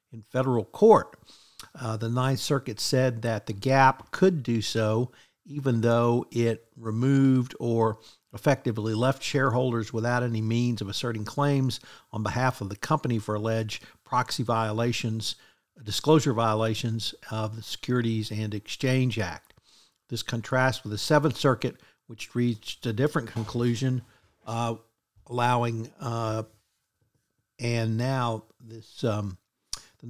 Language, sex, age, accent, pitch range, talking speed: English, male, 50-69, American, 110-135 Hz, 125 wpm